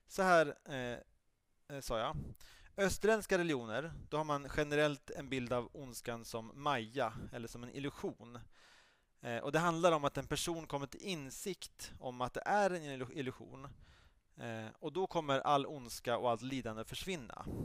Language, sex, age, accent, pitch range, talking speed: Swedish, male, 30-49, Norwegian, 120-160 Hz, 165 wpm